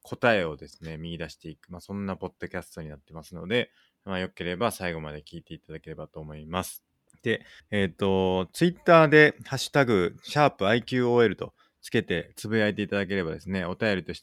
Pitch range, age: 80-110 Hz, 20-39